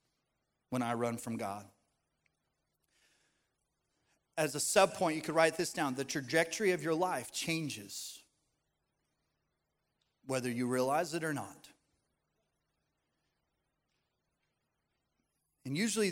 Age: 30-49